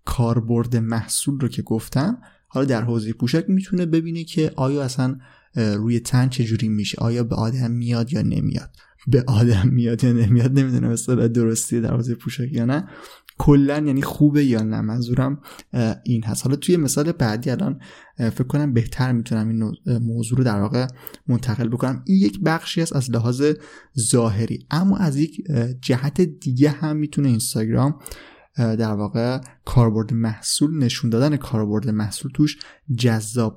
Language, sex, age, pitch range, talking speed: Persian, male, 20-39, 115-145 Hz, 155 wpm